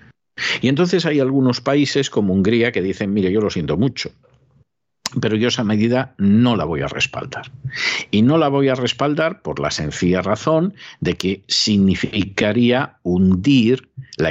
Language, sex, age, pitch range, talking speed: Spanish, male, 50-69, 95-135 Hz, 160 wpm